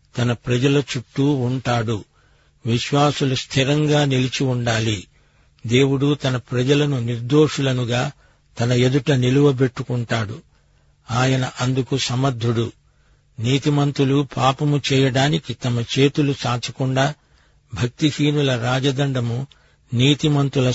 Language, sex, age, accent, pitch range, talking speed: Telugu, male, 50-69, native, 125-140 Hz, 80 wpm